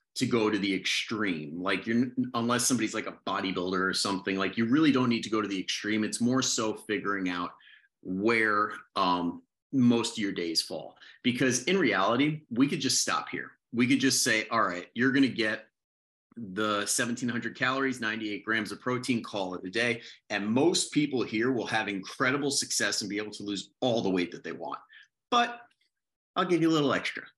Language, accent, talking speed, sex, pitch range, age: English, American, 200 wpm, male, 95-130 Hz, 30-49